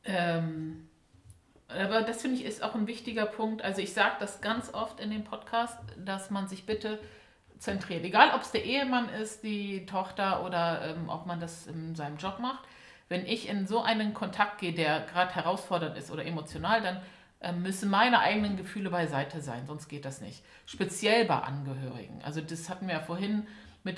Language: German